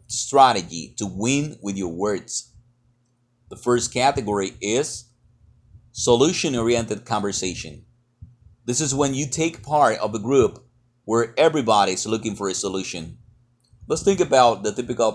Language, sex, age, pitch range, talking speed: English, male, 30-49, 105-130 Hz, 130 wpm